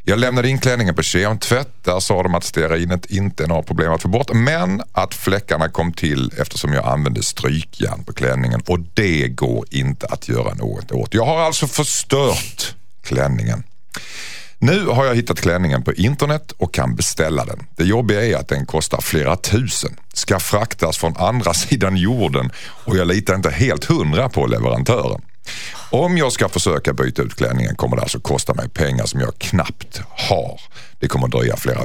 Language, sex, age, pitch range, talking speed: Swedish, male, 50-69, 75-115 Hz, 180 wpm